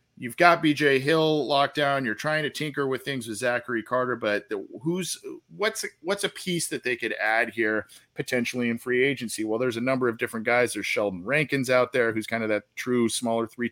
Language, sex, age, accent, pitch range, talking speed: English, male, 40-59, American, 115-145 Hz, 215 wpm